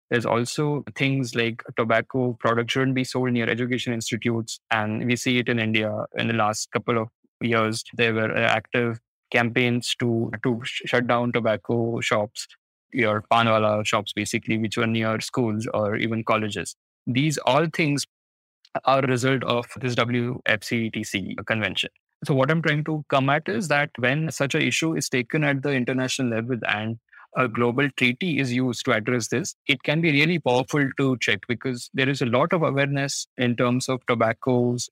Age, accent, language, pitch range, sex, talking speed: 20-39, Indian, English, 115-135 Hz, male, 175 wpm